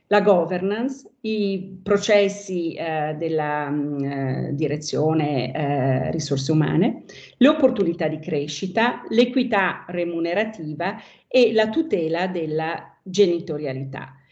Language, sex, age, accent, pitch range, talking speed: Italian, female, 50-69, native, 165-205 Hz, 90 wpm